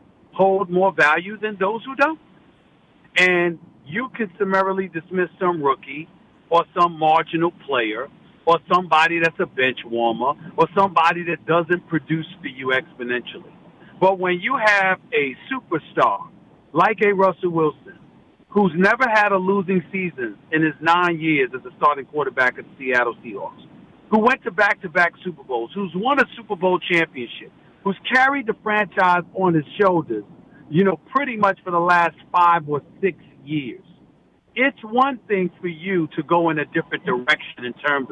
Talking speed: 165 wpm